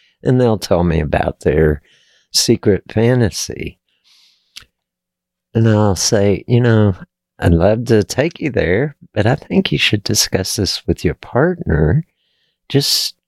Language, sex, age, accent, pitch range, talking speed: English, male, 50-69, American, 90-120 Hz, 135 wpm